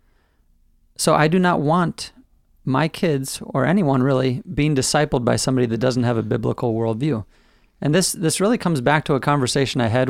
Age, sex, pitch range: 30-49, male, 120-150 Hz